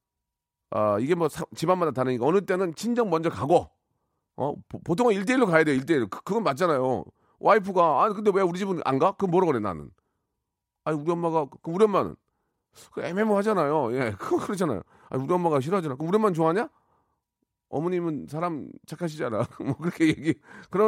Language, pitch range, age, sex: Korean, 115-180 Hz, 40-59, male